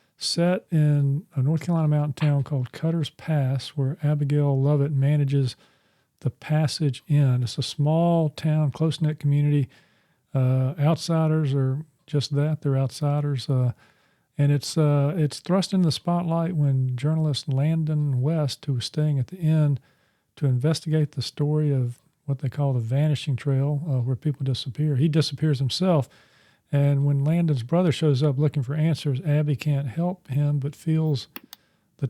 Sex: male